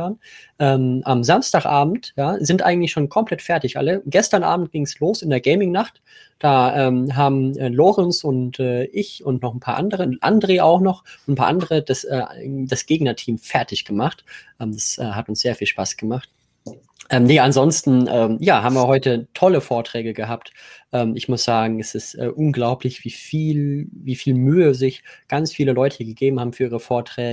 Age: 20-39